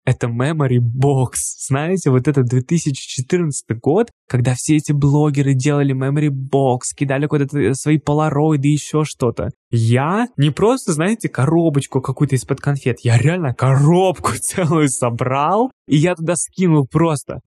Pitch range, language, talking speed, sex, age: 130-160 Hz, Russian, 135 wpm, male, 20-39